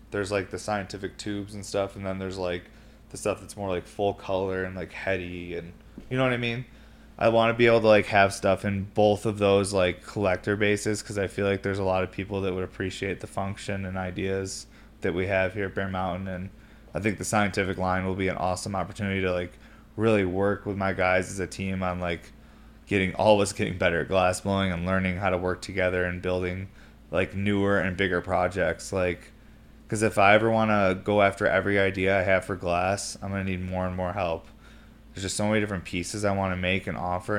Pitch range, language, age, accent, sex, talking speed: 90-105 Hz, English, 20-39, American, male, 230 wpm